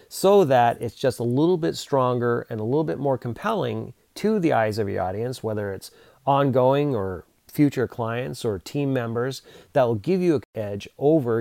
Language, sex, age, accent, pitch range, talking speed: English, male, 30-49, American, 110-140 Hz, 190 wpm